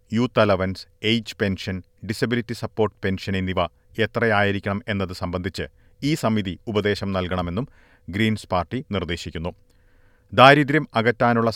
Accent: native